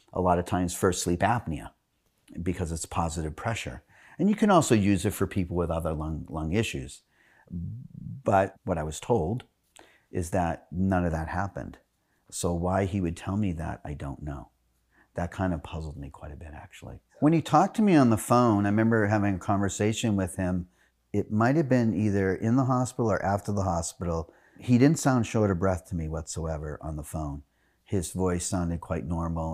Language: English